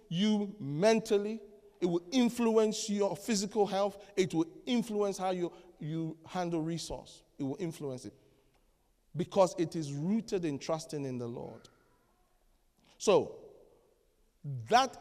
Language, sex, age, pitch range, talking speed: English, male, 40-59, 160-215 Hz, 125 wpm